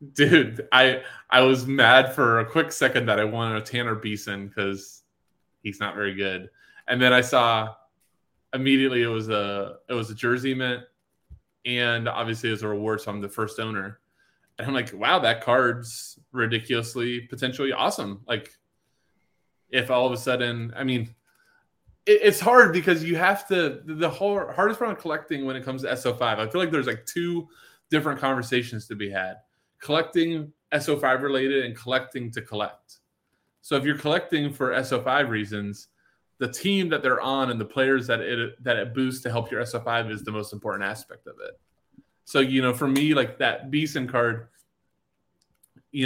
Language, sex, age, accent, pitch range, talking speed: English, male, 20-39, American, 110-135 Hz, 180 wpm